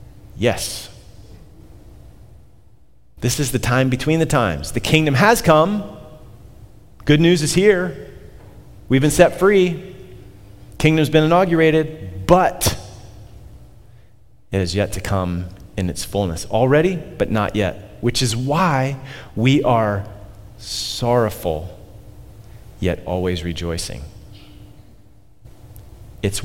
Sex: male